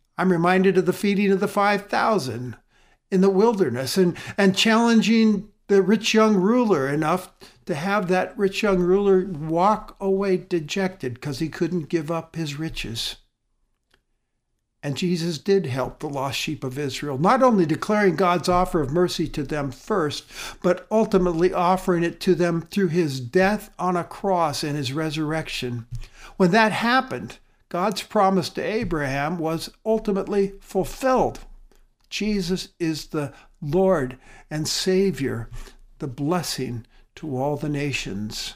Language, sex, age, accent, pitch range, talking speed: English, male, 60-79, American, 135-195 Hz, 140 wpm